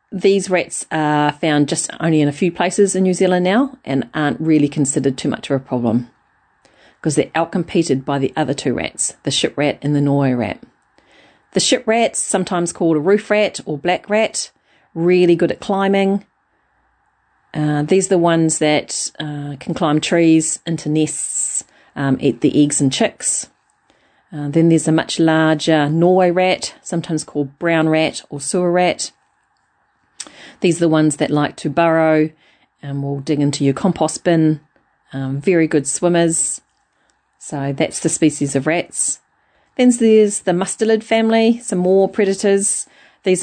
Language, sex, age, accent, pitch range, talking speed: English, female, 40-59, Australian, 145-185 Hz, 165 wpm